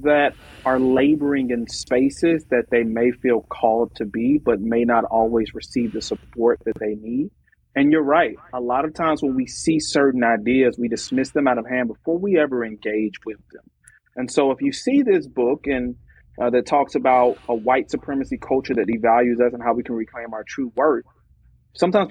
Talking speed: 200 wpm